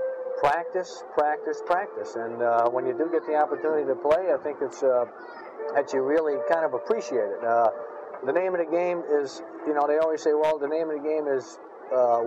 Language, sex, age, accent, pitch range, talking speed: English, male, 50-69, American, 130-175 Hz, 215 wpm